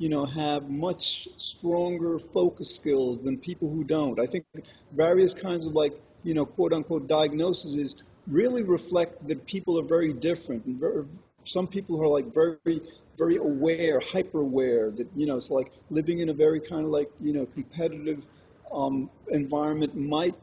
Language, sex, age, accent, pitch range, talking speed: English, male, 40-59, American, 145-175 Hz, 160 wpm